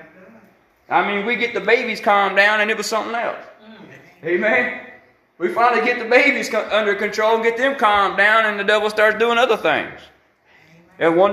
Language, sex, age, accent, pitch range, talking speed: English, male, 30-49, American, 165-215 Hz, 185 wpm